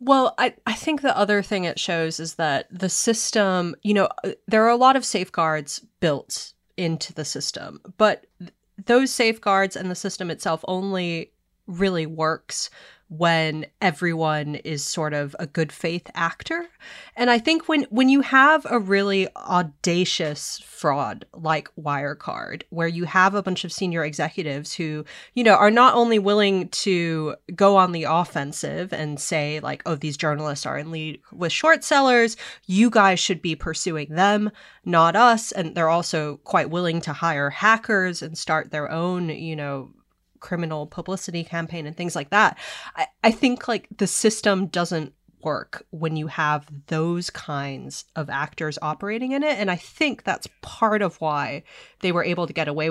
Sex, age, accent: female, 30-49, American